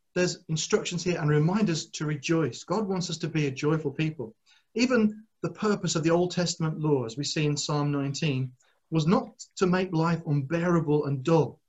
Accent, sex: British, male